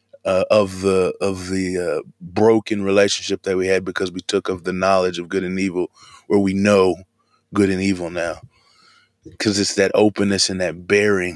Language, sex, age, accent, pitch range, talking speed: English, male, 20-39, American, 95-115 Hz, 185 wpm